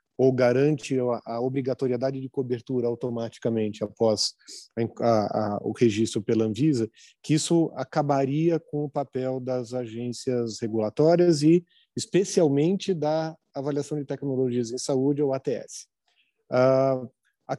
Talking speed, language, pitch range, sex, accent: 115 wpm, Portuguese, 125-160 Hz, male, Brazilian